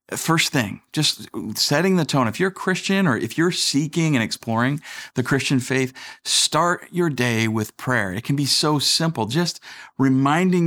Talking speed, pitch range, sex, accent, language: 175 wpm, 110-140 Hz, male, American, English